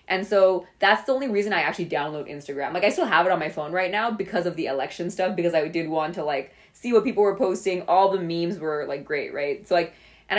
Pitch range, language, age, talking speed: 155-190 Hz, English, 20-39, 265 wpm